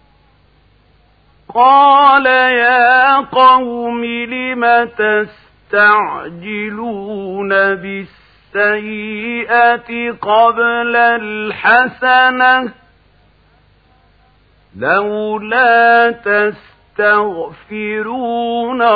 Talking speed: 30 wpm